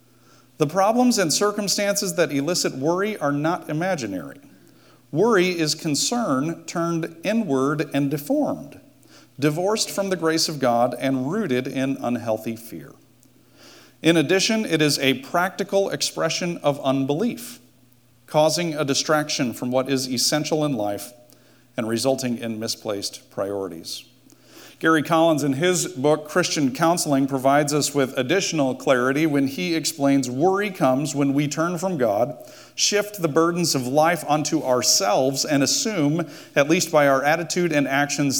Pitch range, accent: 130-170 Hz, American